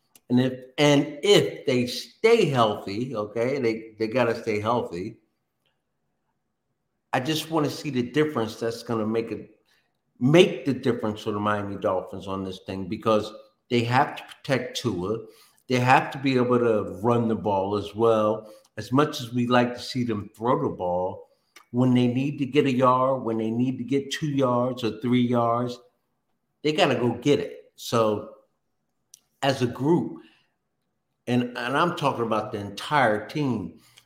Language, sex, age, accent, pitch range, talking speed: English, male, 50-69, American, 115-140 Hz, 175 wpm